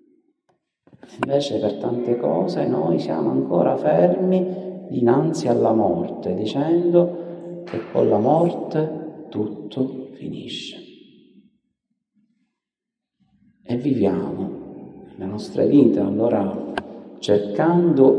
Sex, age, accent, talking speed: male, 40-59, native, 80 wpm